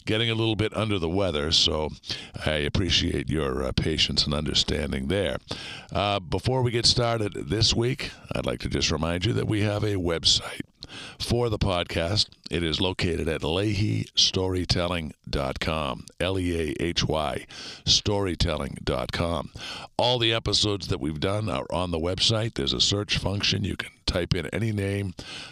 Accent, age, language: American, 50-69, English